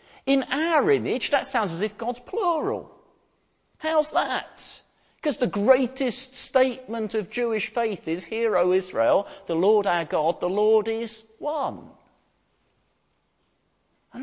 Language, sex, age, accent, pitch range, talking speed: English, male, 40-59, British, 180-270 Hz, 130 wpm